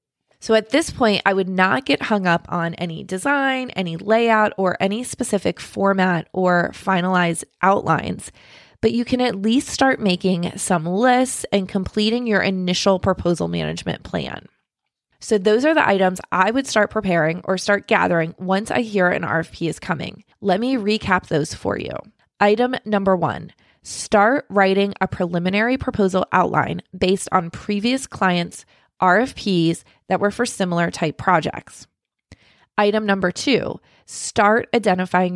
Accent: American